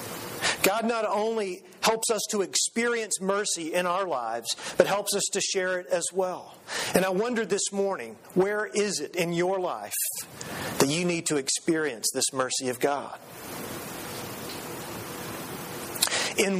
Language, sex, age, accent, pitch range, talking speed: English, male, 40-59, American, 165-210 Hz, 145 wpm